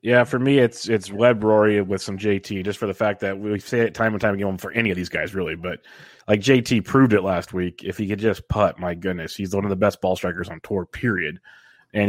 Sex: male